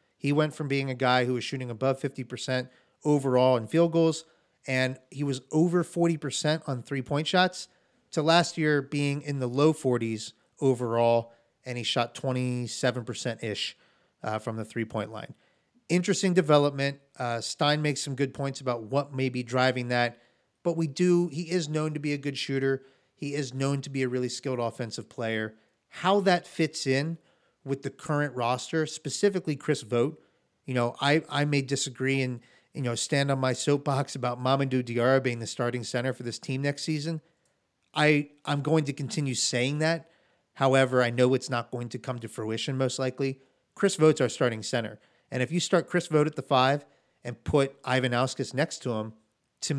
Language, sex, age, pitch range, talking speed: English, male, 30-49, 125-150 Hz, 185 wpm